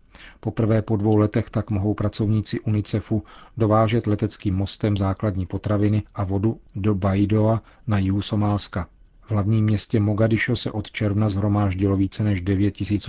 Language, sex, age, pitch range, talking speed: Czech, male, 40-59, 100-110 Hz, 145 wpm